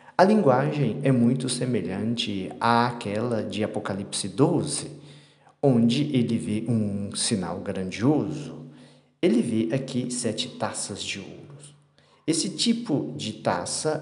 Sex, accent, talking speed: male, Brazilian, 110 wpm